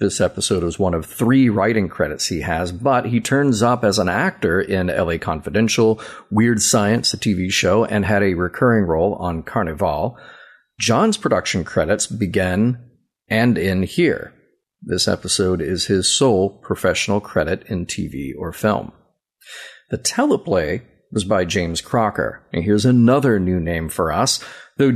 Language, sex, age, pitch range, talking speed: English, male, 40-59, 90-120 Hz, 155 wpm